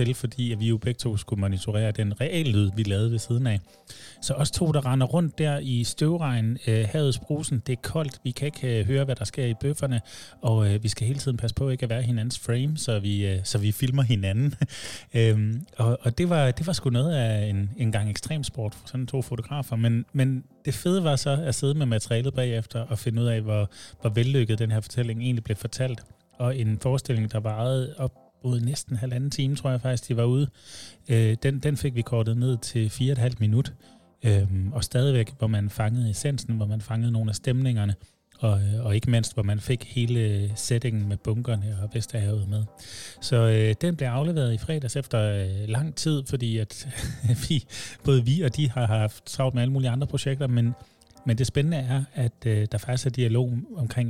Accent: native